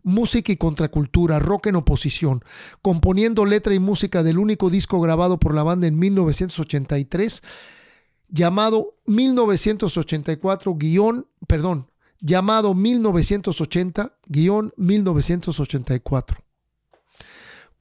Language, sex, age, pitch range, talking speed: English, male, 50-69, 155-205 Hz, 85 wpm